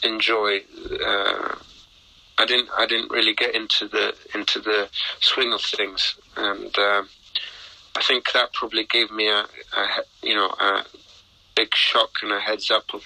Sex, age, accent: male, 30-49, British